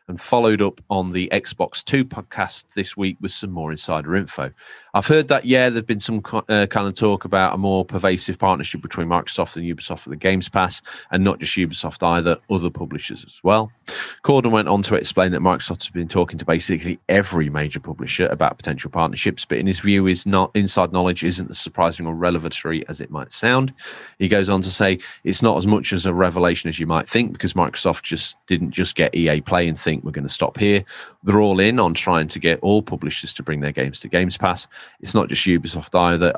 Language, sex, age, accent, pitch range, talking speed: English, male, 30-49, British, 85-110 Hz, 225 wpm